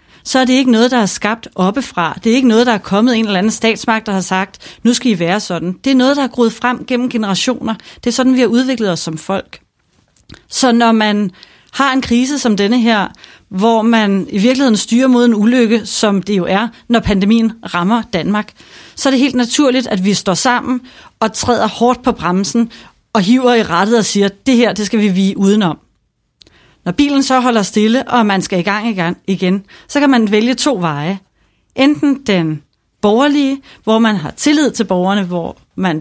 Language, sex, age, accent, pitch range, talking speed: Danish, female, 30-49, native, 195-245 Hz, 210 wpm